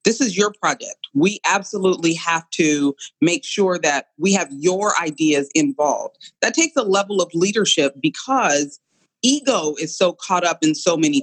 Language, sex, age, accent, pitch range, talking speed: English, female, 30-49, American, 155-205 Hz, 165 wpm